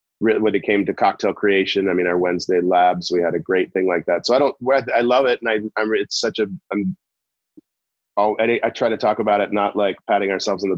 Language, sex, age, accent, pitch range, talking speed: English, male, 30-49, American, 95-105 Hz, 250 wpm